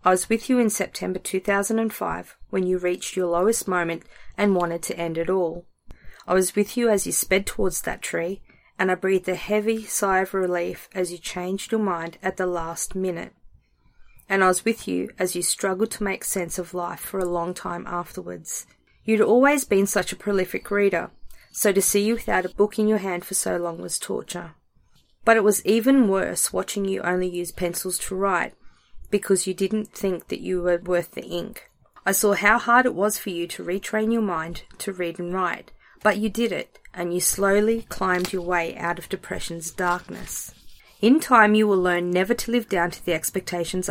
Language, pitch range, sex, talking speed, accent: English, 175-205 Hz, female, 205 wpm, Australian